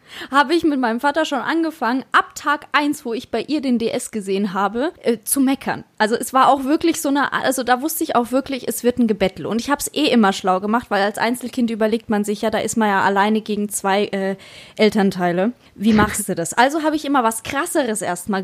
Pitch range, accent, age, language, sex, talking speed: 210-265 Hz, German, 20-39, German, female, 240 wpm